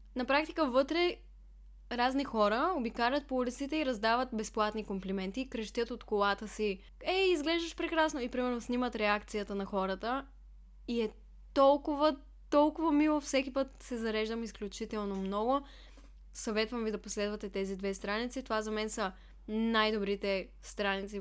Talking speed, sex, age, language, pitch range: 140 wpm, female, 10-29, Bulgarian, 205-255 Hz